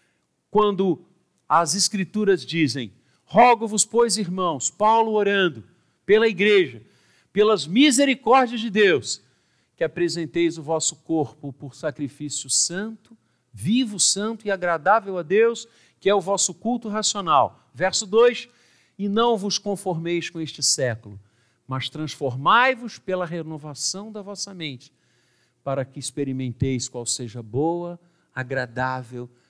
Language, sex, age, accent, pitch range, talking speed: Portuguese, male, 50-69, Brazilian, 125-205 Hz, 120 wpm